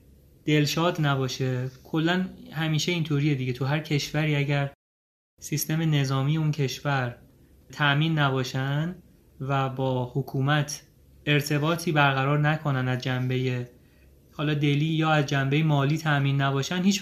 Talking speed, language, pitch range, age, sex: 115 wpm, Persian, 135-155 Hz, 30-49, male